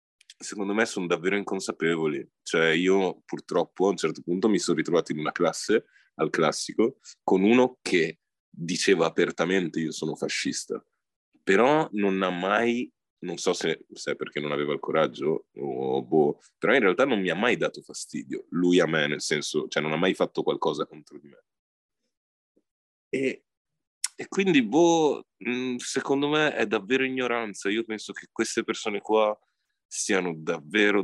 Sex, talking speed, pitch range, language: male, 160 wpm, 85-140 Hz, Italian